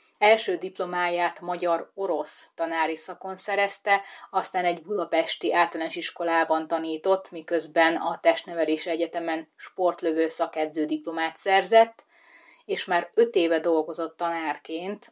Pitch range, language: 160-185 Hz, Hungarian